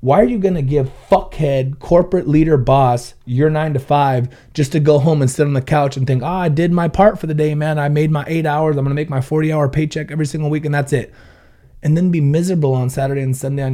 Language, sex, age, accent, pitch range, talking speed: English, male, 30-49, American, 125-155 Hz, 270 wpm